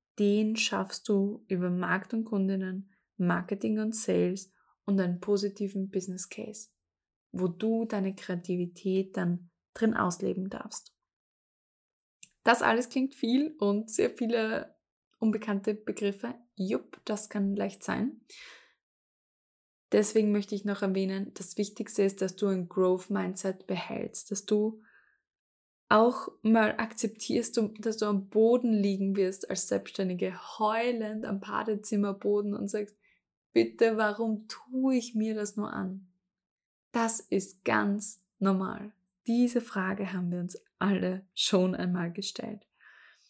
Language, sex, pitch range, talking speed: German, female, 195-225 Hz, 125 wpm